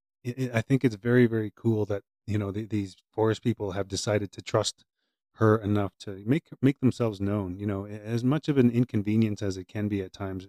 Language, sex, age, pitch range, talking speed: English, male, 30-49, 100-125 Hz, 210 wpm